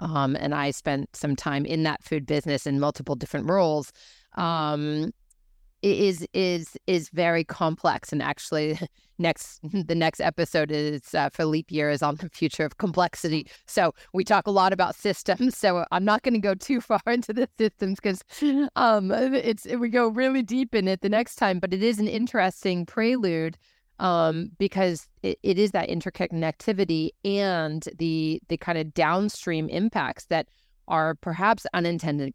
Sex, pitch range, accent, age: female, 155-200 Hz, American, 30-49